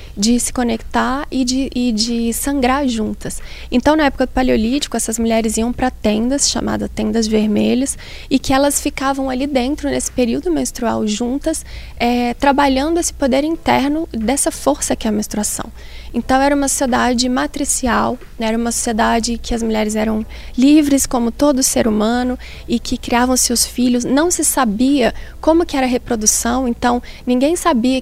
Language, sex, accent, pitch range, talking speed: Portuguese, female, Brazilian, 230-275 Hz, 165 wpm